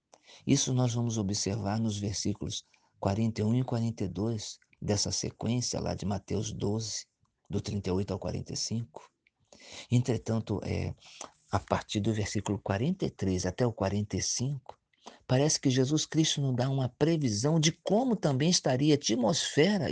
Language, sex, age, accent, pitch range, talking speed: Portuguese, male, 50-69, Brazilian, 100-130 Hz, 125 wpm